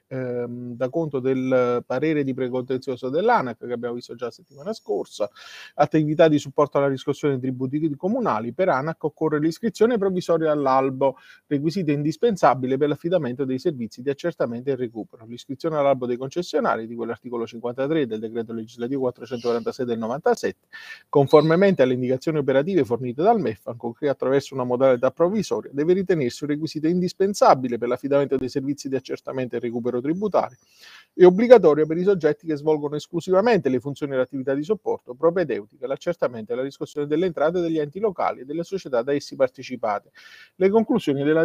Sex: male